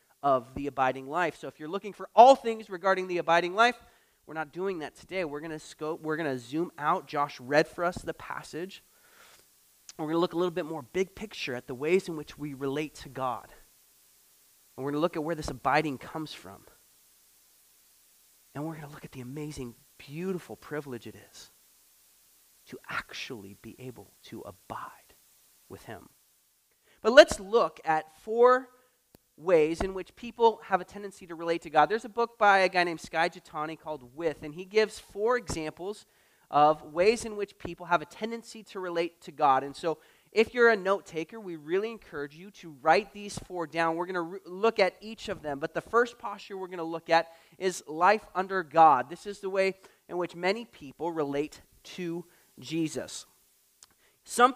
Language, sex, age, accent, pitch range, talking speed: English, male, 30-49, American, 150-195 Hz, 195 wpm